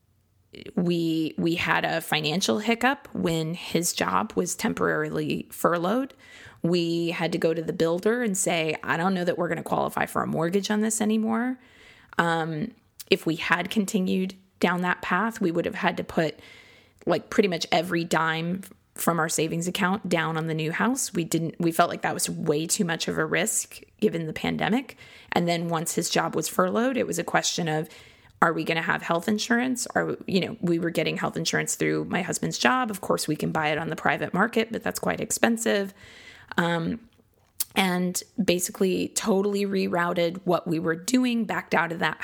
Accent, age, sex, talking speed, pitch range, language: American, 20-39, female, 195 wpm, 160-200 Hz, English